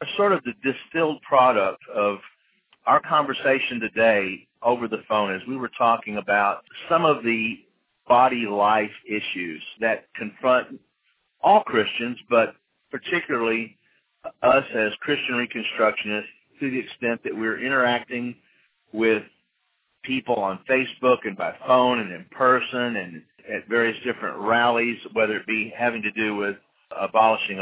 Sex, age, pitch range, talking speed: male, 50-69, 105-125 Hz, 135 wpm